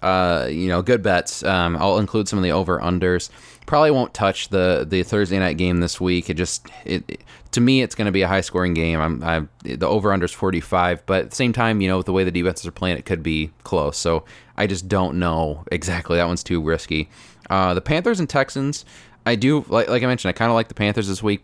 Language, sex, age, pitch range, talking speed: English, male, 20-39, 85-105 Hz, 250 wpm